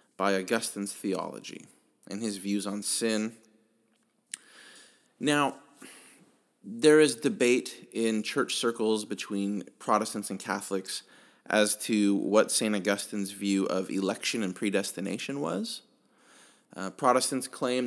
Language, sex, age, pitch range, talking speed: English, male, 30-49, 105-135 Hz, 110 wpm